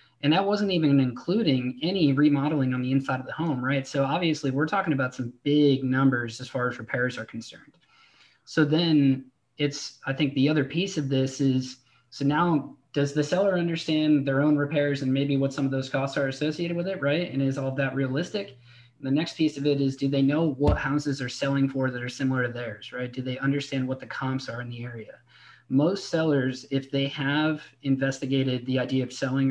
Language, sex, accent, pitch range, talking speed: English, male, American, 130-150 Hz, 215 wpm